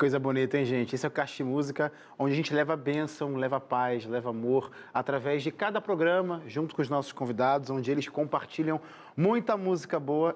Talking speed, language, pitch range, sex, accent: 195 wpm, Portuguese, 150-205 Hz, male, Brazilian